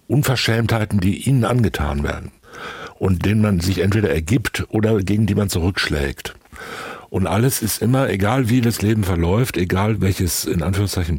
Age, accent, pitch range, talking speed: 60-79, German, 90-105 Hz, 155 wpm